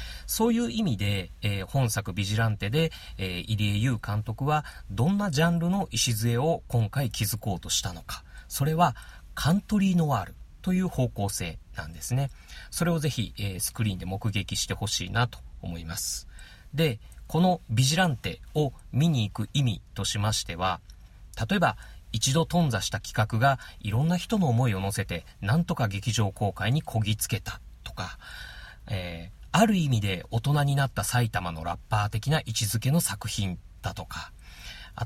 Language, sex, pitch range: Japanese, male, 100-150 Hz